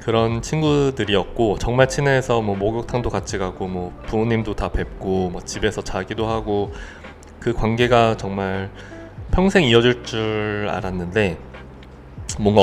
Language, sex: Korean, male